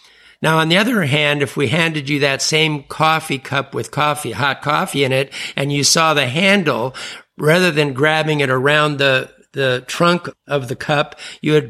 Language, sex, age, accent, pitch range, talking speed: English, male, 60-79, American, 140-160 Hz, 190 wpm